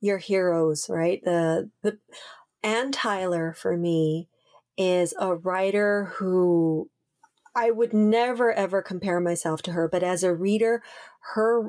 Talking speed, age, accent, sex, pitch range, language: 135 wpm, 40-59, American, female, 175-215 Hz, English